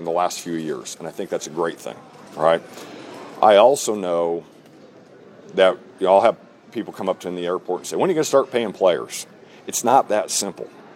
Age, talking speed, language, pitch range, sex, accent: 50-69, 225 wpm, English, 95-125 Hz, male, American